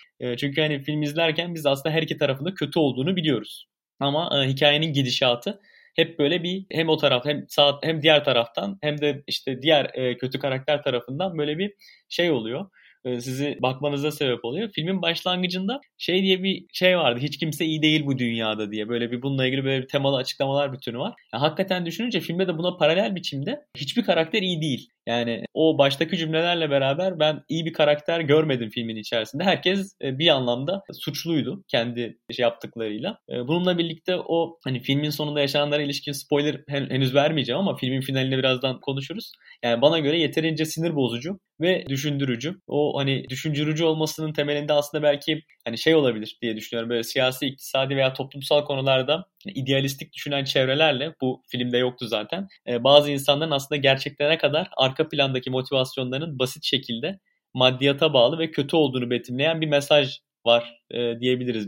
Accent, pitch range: native, 130-160 Hz